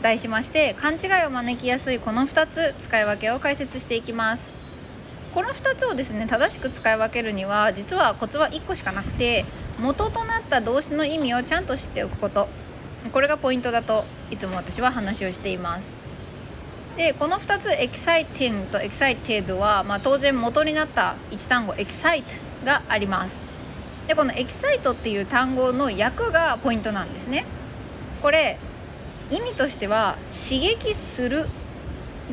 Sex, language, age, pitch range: female, Japanese, 20-39, 220-315 Hz